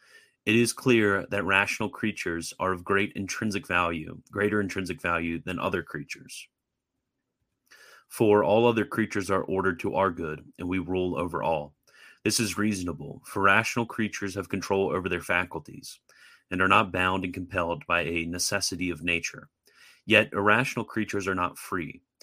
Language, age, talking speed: English, 30-49, 160 wpm